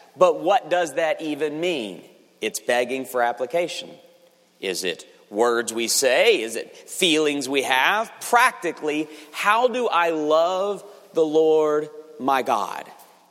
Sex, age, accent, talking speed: male, 40-59, American, 130 wpm